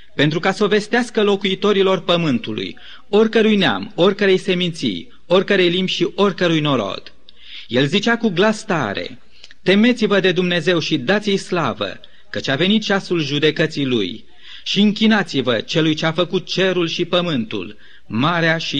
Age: 30-49